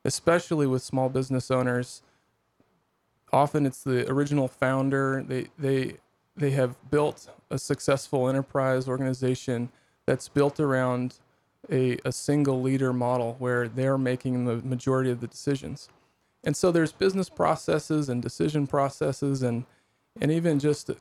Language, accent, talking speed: English, American, 135 wpm